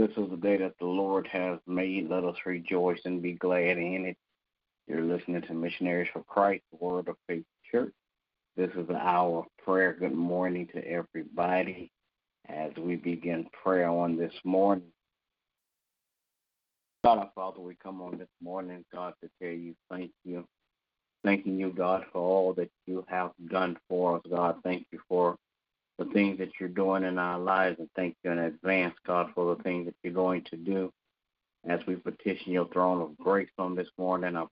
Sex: male